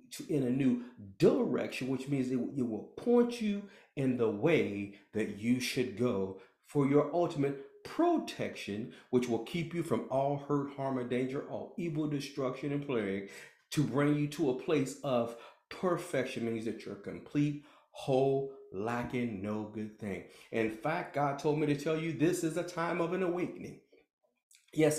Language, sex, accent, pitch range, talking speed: English, male, American, 125-155 Hz, 170 wpm